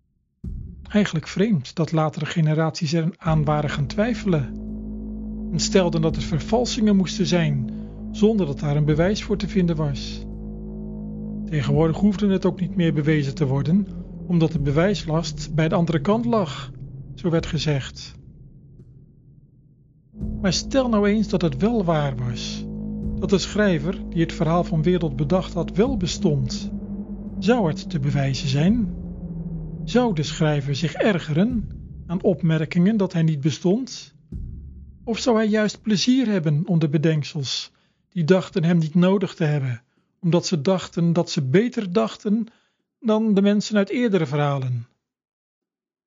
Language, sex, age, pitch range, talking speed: Dutch, male, 40-59, 150-205 Hz, 145 wpm